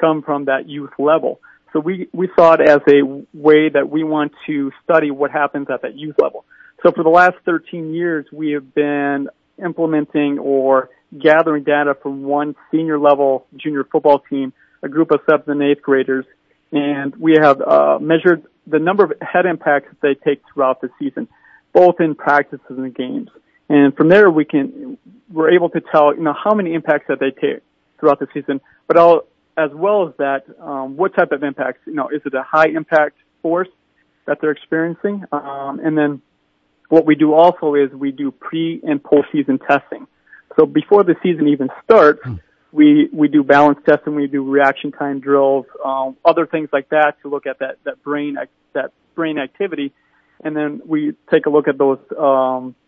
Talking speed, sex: 190 wpm, male